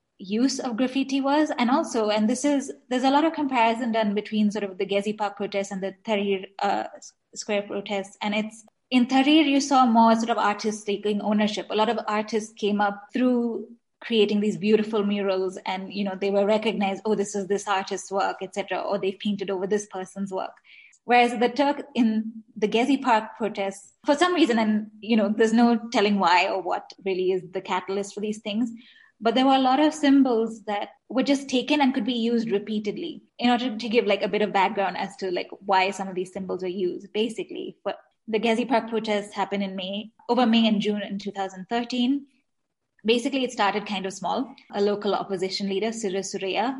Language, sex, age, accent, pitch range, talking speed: English, female, 20-39, Indian, 200-245 Hz, 205 wpm